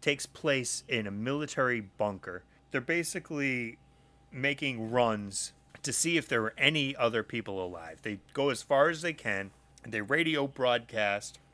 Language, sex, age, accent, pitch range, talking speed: English, male, 30-49, American, 105-140 Hz, 155 wpm